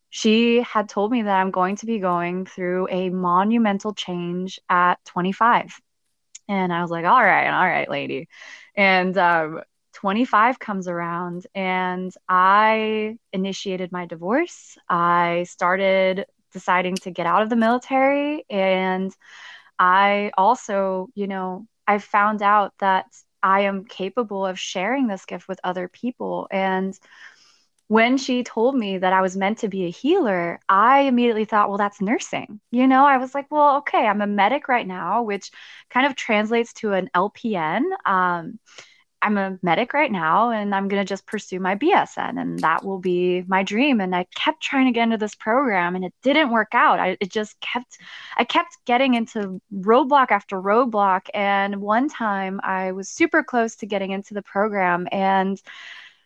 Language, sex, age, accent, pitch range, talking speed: English, female, 20-39, American, 185-235 Hz, 170 wpm